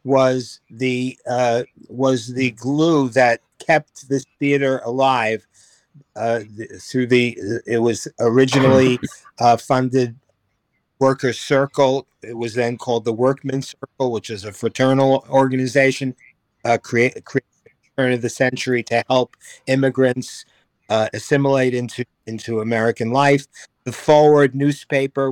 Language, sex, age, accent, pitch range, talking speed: English, male, 50-69, American, 120-140 Hz, 125 wpm